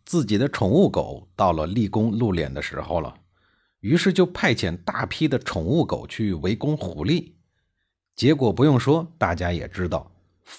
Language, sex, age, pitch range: Chinese, male, 50-69, 90-140 Hz